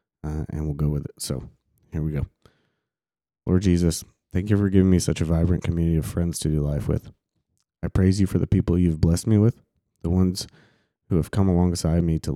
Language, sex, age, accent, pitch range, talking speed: English, male, 20-39, American, 80-95 Hz, 220 wpm